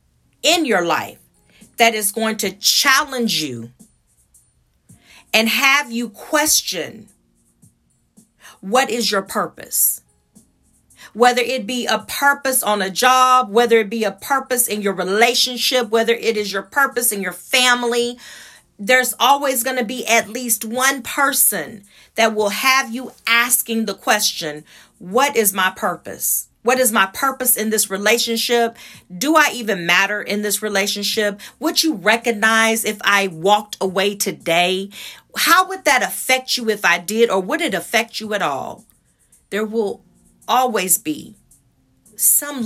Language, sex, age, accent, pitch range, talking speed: English, female, 40-59, American, 205-250 Hz, 145 wpm